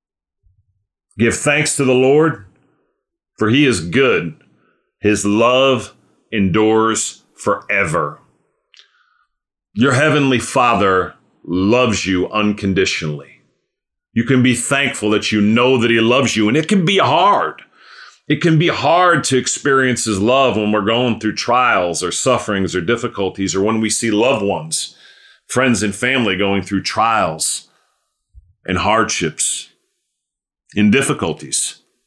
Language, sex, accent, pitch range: English, male, American, 95-125 Hz